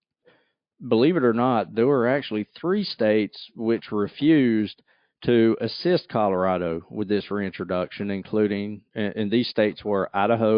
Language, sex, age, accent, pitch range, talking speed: English, male, 40-59, American, 100-110 Hz, 130 wpm